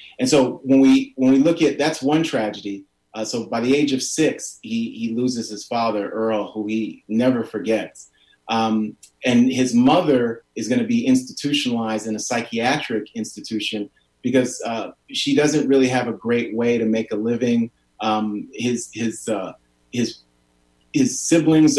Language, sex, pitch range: English, male, 110-135 Hz